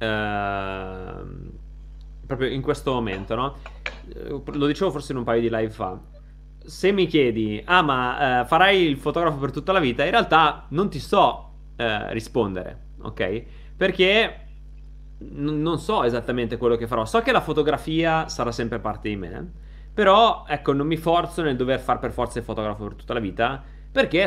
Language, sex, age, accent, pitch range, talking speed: Italian, male, 30-49, native, 110-145 Hz, 175 wpm